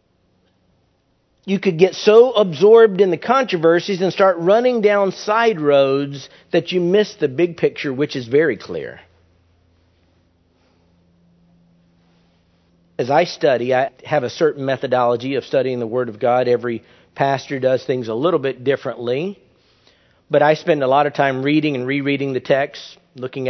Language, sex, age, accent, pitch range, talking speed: English, male, 50-69, American, 130-165 Hz, 150 wpm